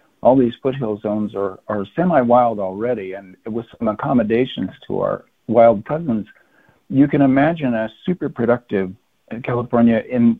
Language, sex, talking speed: English, male, 140 wpm